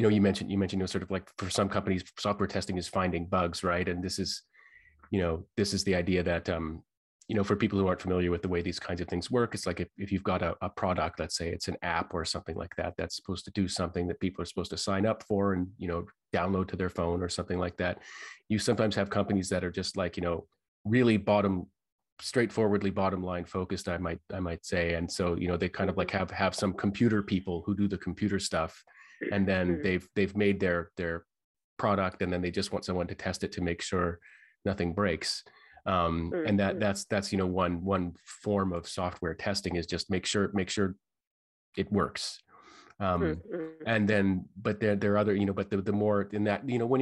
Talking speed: 240 wpm